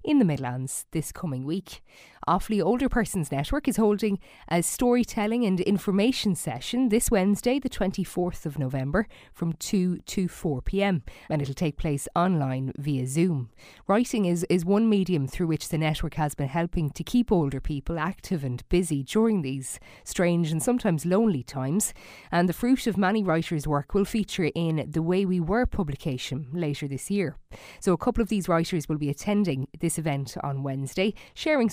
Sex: female